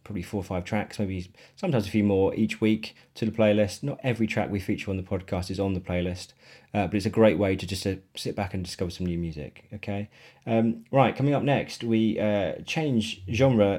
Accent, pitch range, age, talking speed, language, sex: British, 100-115 Hz, 30-49, 230 wpm, English, male